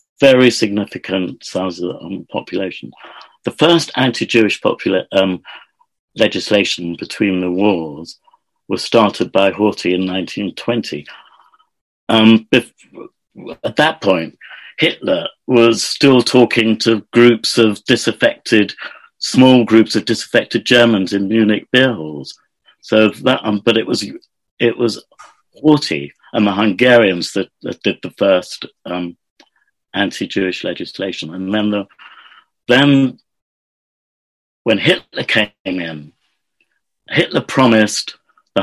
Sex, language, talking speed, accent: male, English, 115 wpm, British